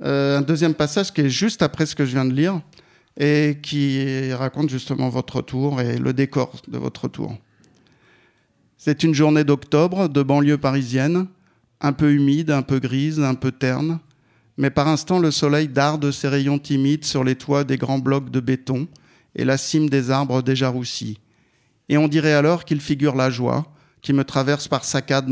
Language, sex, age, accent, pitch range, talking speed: French, male, 50-69, French, 130-150 Hz, 190 wpm